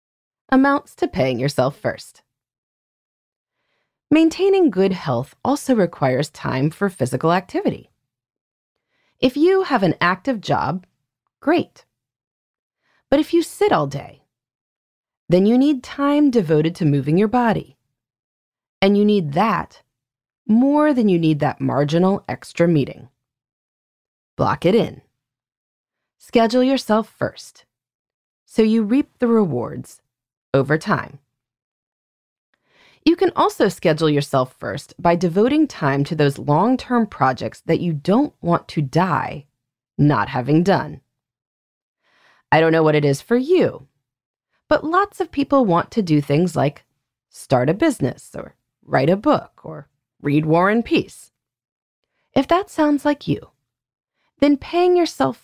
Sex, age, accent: female, 30-49, American